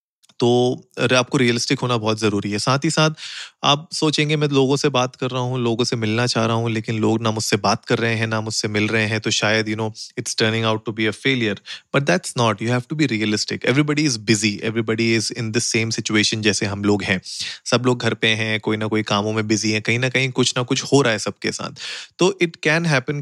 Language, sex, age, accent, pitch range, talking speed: Hindi, male, 30-49, native, 110-135 Hz, 250 wpm